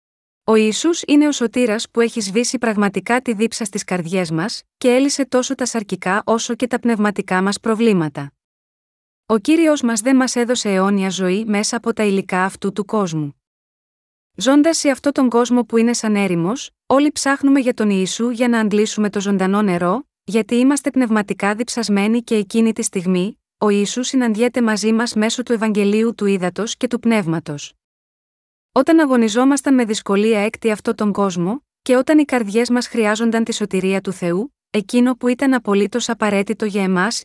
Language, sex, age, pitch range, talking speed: Greek, female, 20-39, 200-245 Hz, 170 wpm